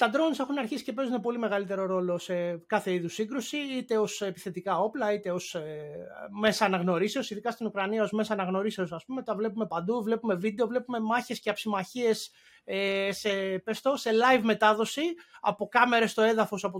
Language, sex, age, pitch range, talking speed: Greek, male, 30-49, 190-245 Hz, 170 wpm